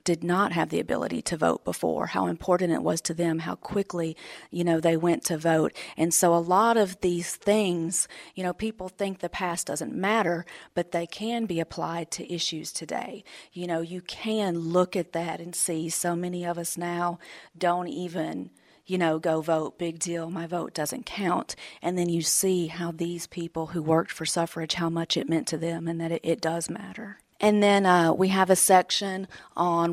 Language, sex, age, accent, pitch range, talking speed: English, female, 40-59, American, 170-190 Hz, 205 wpm